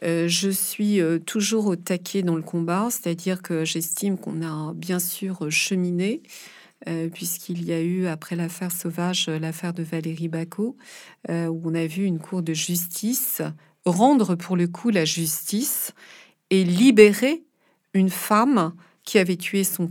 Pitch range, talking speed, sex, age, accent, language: 170-205 Hz, 150 wpm, female, 40-59, French, French